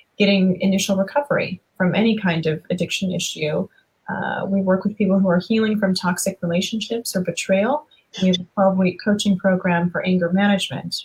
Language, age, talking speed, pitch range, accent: English, 30-49, 170 wpm, 180-210 Hz, American